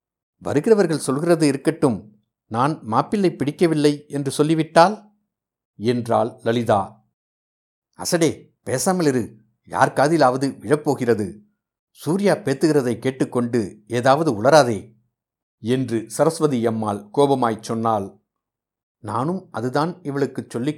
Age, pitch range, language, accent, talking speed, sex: 60-79, 115-150 Hz, Tamil, native, 85 wpm, male